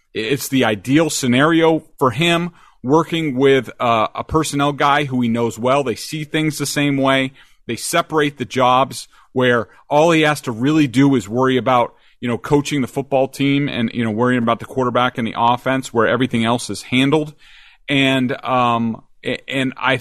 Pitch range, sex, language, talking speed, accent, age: 125-155 Hz, male, English, 185 wpm, American, 40-59